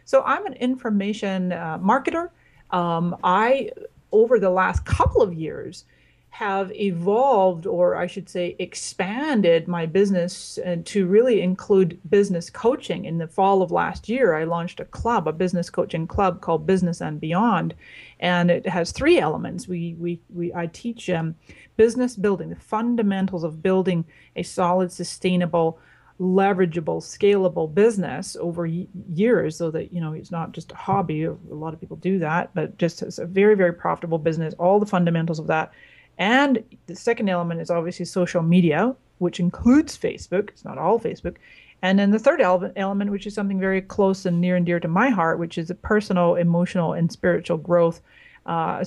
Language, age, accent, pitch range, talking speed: English, 30-49, American, 170-200 Hz, 175 wpm